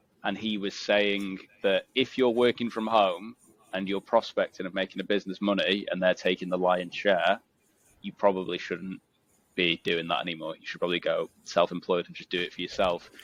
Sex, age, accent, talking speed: male, 20-39, British, 190 wpm